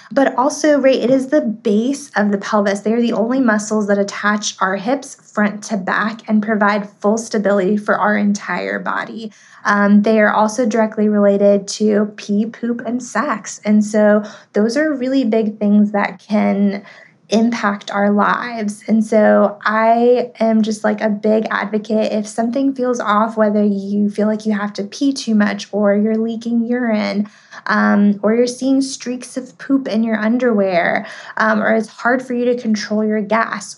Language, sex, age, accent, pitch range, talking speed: English, female, 20-39, American, 205-230 Hz, 180 wpm